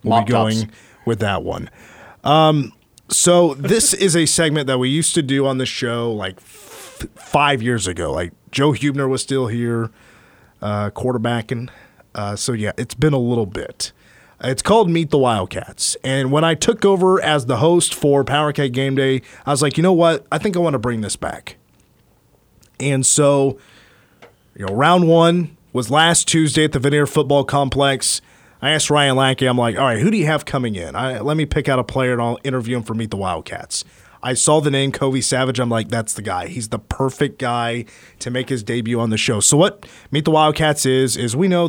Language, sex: English, male